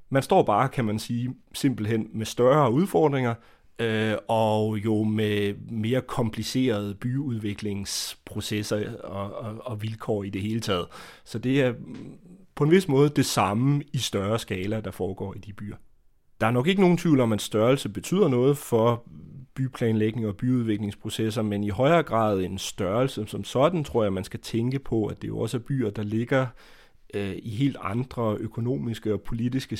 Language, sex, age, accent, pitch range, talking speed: Danish, male, 30-49, native, 105-130 Hz, 165 wpm